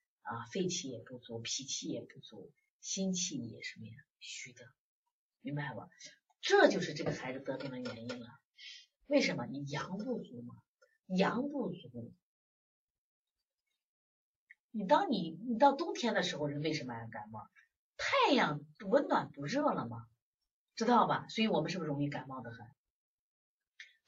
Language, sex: Chinese, female